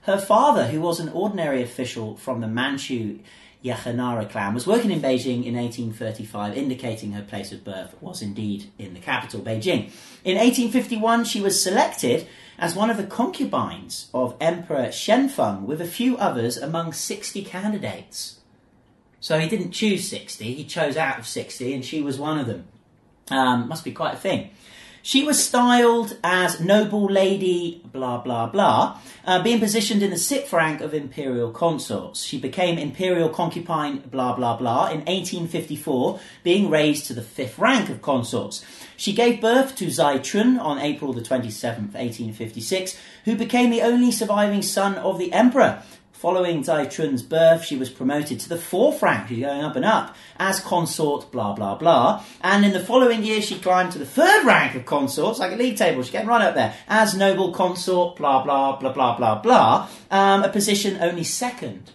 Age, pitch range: 40-59, 130-205 Hz